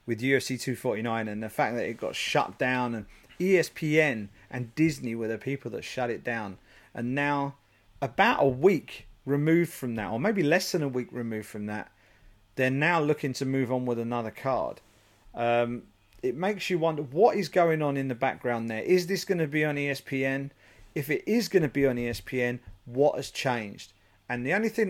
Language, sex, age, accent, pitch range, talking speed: English, male, 40-59, British, 110-140 Hz, 200 wpm